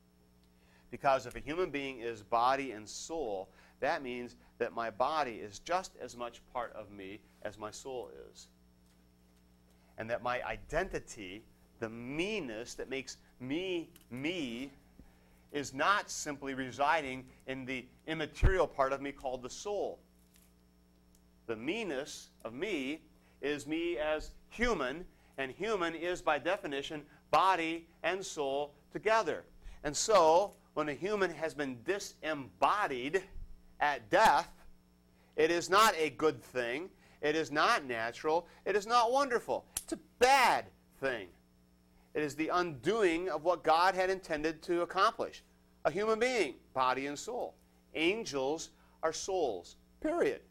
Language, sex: English, male